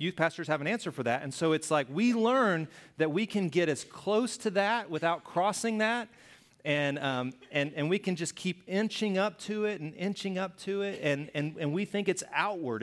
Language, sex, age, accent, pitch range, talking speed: English, male, 30-49, American, 125-175 Hz, 225 wpm